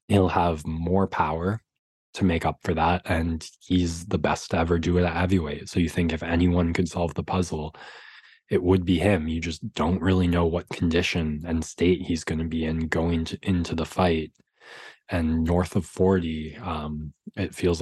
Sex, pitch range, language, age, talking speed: male, 80-90 Hz, English, 20-39, 190 wpm